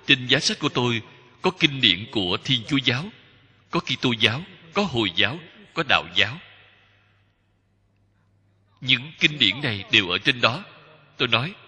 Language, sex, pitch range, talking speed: Vietnamese, male, 100-150 Hz, 165 wpm